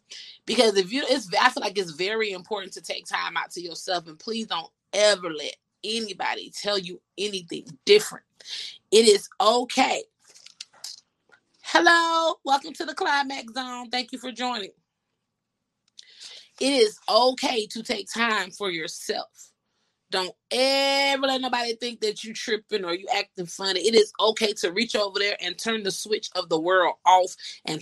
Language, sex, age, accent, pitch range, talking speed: English, female, 30-49, American, 185-245 Hz, 160 wpm